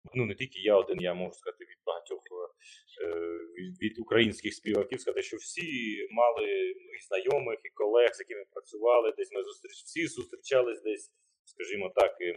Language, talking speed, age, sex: Ukrainian, 160 wpm, 30-49, male